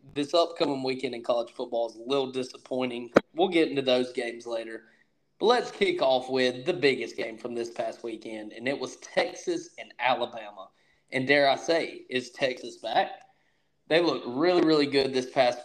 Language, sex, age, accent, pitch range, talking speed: English, male, 20-39, American, 120-140 Hz, 185 wpm